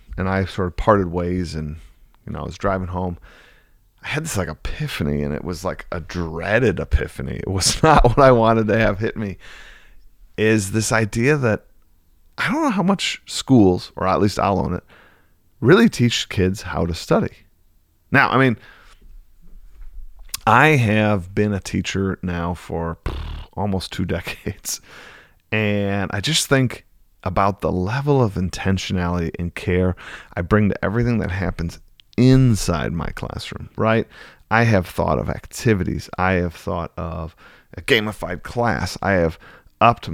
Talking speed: 160 wpm